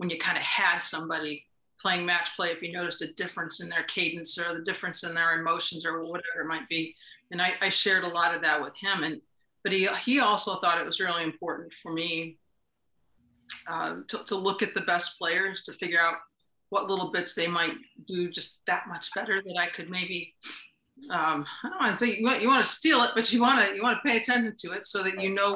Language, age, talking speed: English, 40-59, 235 wpm